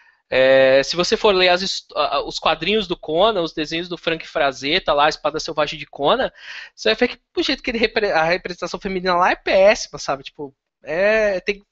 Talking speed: 160 wpm